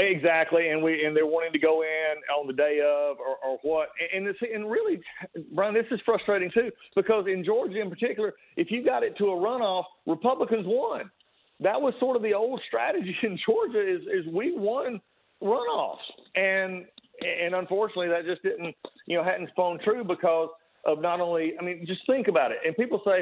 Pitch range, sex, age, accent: 165-215 Hz, male, 40-59, American